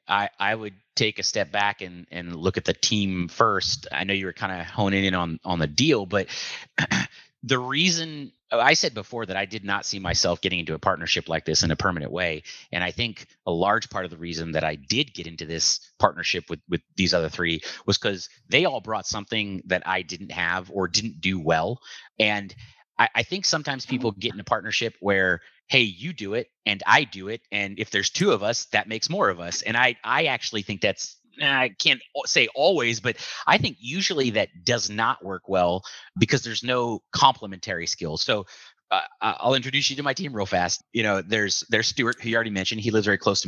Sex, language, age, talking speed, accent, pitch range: male, English, 30-49, 220 wpm, American, 90-115 Hz